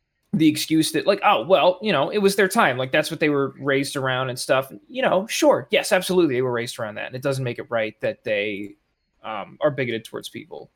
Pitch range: 115-155 Hz